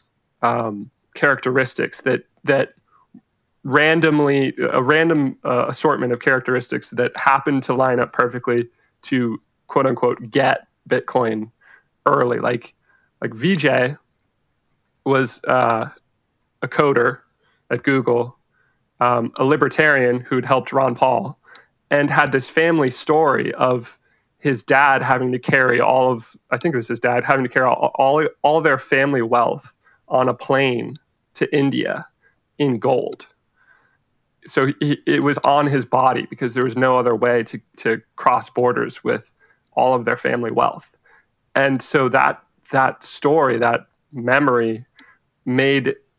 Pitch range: 120-140 Hz